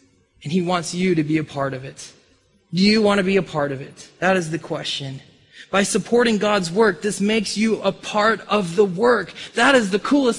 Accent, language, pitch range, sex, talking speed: American, English, 215-280 Hz, male, 225 wpm